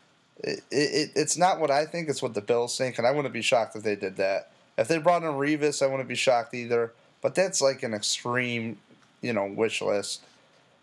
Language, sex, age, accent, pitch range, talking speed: English, male, 30-49, American, 120-165 Hz, 220 wpm